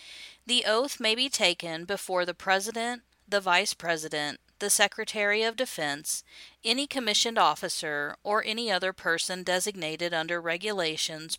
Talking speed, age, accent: 130 wpm, 40-59, American